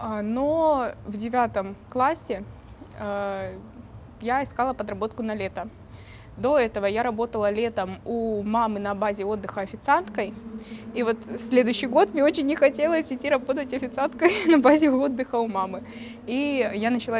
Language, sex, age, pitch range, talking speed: Russian, female, 20-39, 215-265 Hz, 140 wpm